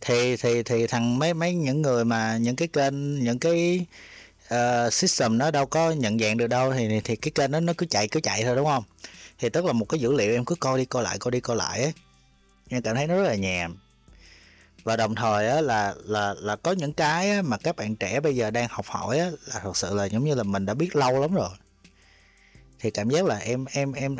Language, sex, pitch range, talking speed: Vietnamese, male, 105-145 Hz, 250 wpm